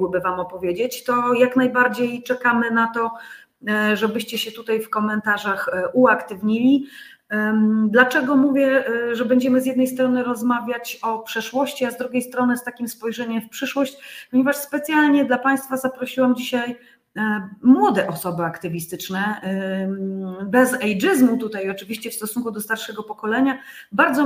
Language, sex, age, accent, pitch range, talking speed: Polish, female, 30-49, native, 215-270 Hz, 130 wpm